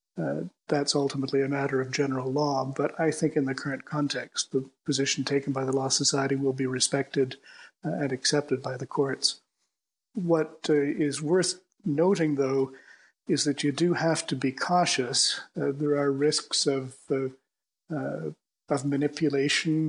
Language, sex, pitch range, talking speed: English, male, 135-150 Hz, 155 wpm